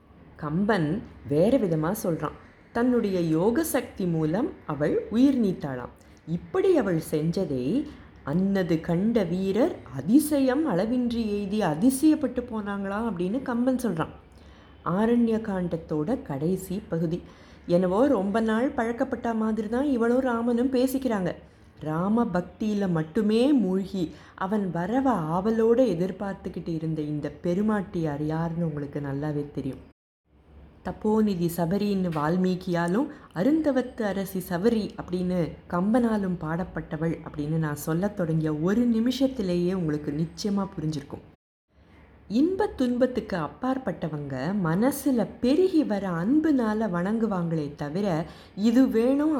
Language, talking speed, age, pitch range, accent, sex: Tamil, 100 wpm, 30-49, 165-235 Hz, native, female